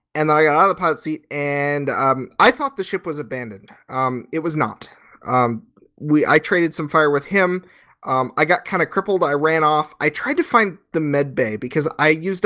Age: 30-49